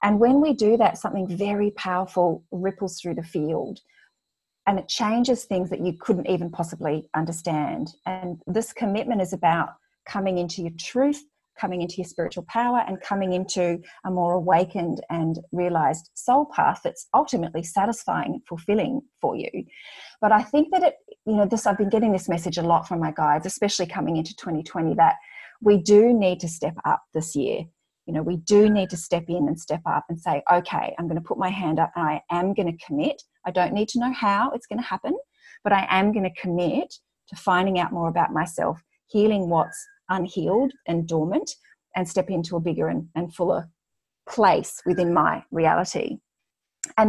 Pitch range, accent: 175-220 Hz, Australian